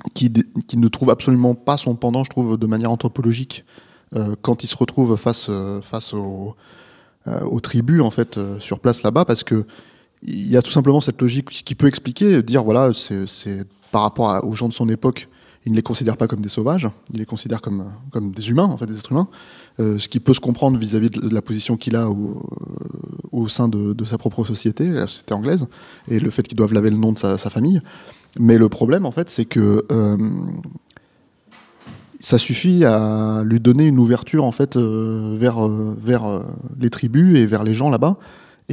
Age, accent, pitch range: 20-39, French, 110-130 Hz